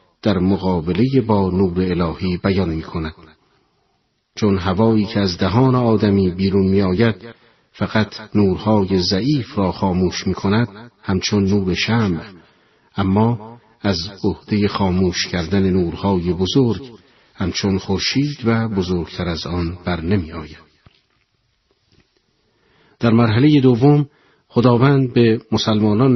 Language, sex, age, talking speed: Persian, male, 50-69, 110 wpm